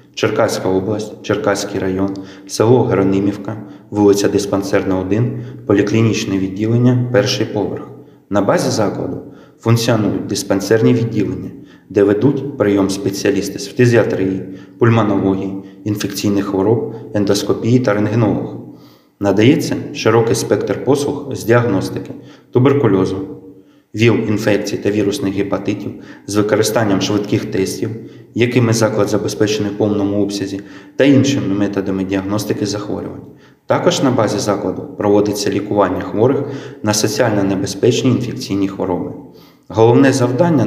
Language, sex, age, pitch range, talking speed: Ukrainian, male, 20-39, 100-120 Hz, 105 wpm